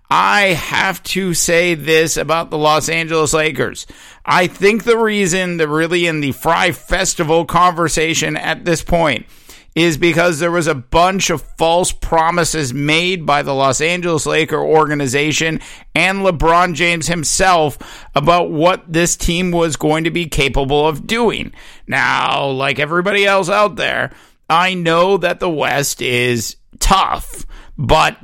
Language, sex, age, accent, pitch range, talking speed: English, male, 50-69, American, 150-175 Hz, 145 wpm